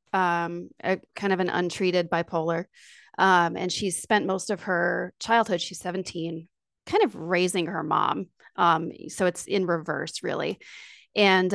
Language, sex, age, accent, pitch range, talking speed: English, female, 30-49, American, 170-195 Hz, 150 wpm